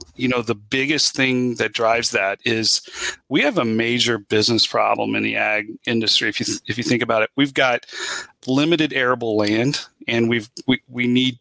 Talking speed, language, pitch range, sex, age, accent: 195 wpm, English, 115-130 Hz, male, 40-59, American